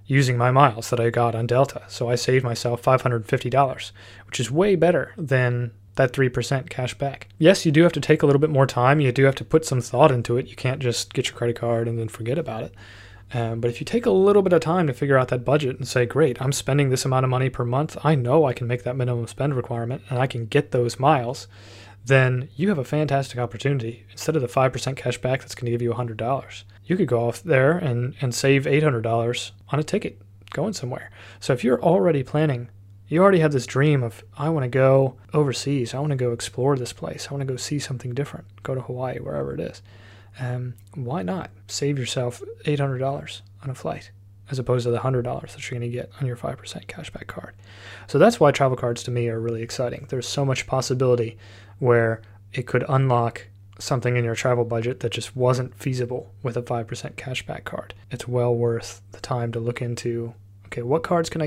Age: 30-49